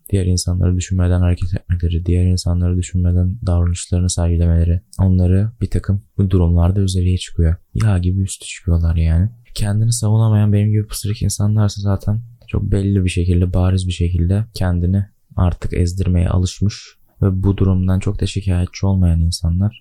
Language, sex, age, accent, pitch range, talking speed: Turkish, male, 20-39, native, 90-105 Hz, 145 wpm